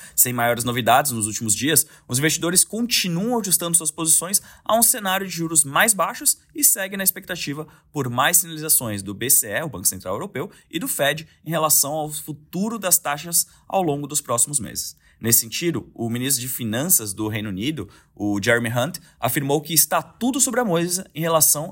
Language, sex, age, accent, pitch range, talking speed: Portuguese, male, 20-39, Brazilian, 120-165 Hz, 185 wpm